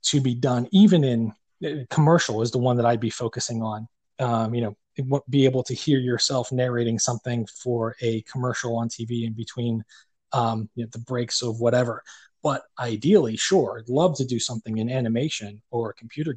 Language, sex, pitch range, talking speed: English, male, 115-135 Hz, 185 wpm